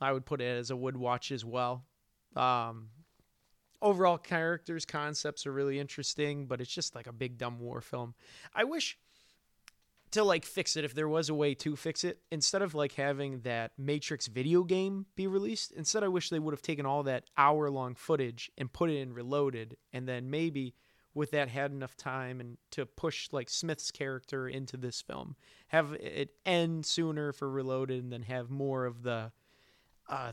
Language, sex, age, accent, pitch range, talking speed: English, male, 30-49, American, 125-155 Hz, 190 wpm